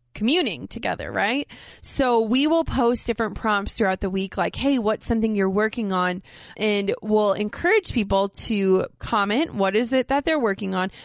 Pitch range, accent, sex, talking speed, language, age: 195-235 Hz, American, female, 175 wpm, English, 20-39